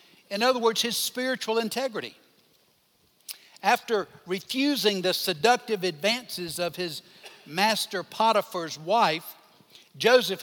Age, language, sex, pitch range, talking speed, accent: 60-79, English, male, 170-220 Hz, 100 wpm, American